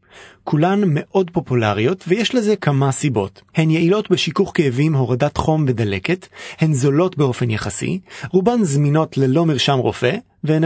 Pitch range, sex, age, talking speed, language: 125-175 Hz, male, 30-49, 135 wpm, Hebrew